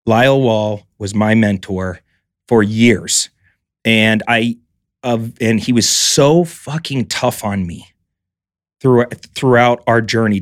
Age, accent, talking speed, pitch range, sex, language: 30-49, American, 130 wpm, 100-120 Hz, male, English